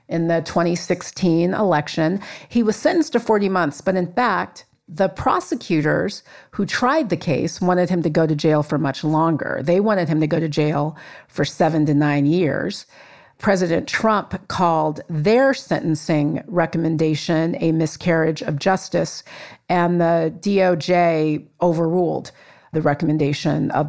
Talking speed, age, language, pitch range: 145 wpm, 40-59, English, 155-195 Hz